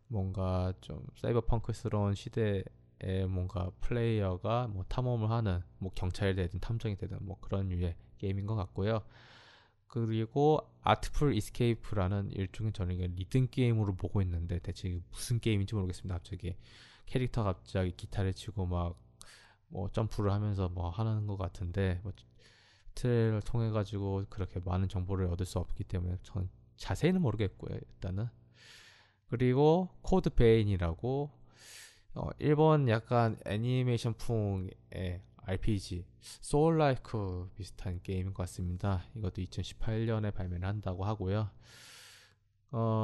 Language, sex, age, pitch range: Korean, male, 20-39, 95-115 Hz